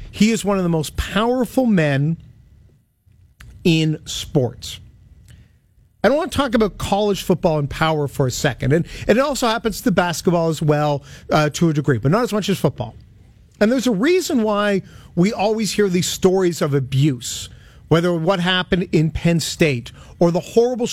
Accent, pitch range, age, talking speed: American, 125-200 Hz, 50-69, 180 wpm